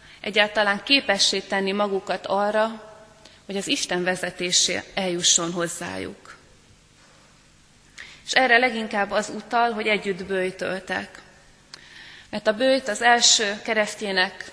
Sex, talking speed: female, 105 wpm